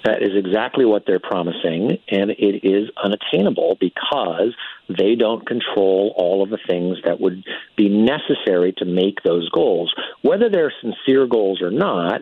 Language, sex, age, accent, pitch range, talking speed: English, male, 50-69, American, 95-120 Hz, 155 wpm